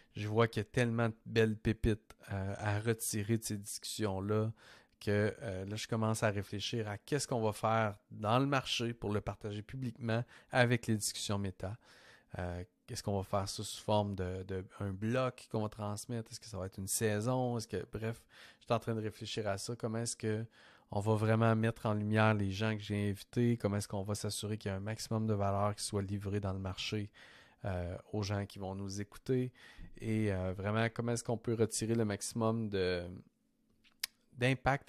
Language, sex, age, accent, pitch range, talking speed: French, male, 30-49, Canadian, 100-115 Hz, 205 wpm